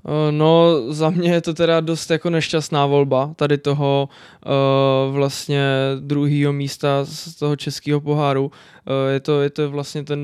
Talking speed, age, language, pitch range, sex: 160 wpm, 20-39, Czech, 140-150 Hz, male